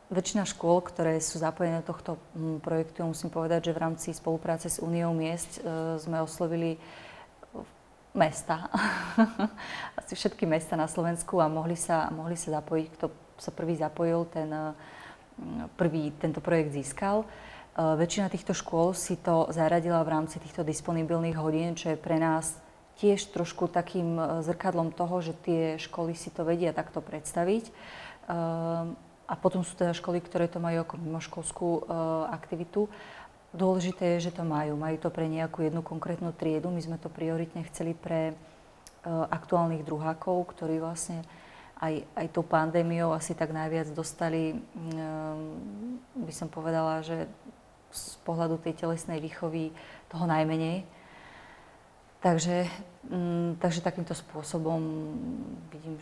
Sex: female